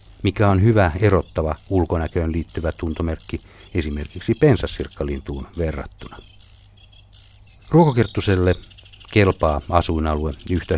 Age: 60-79